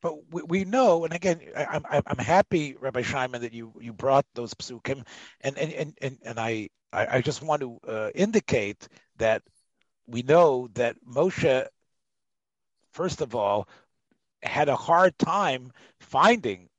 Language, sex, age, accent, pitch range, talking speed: English, male, 40-59, American, 135-185 Hz, 150 wpm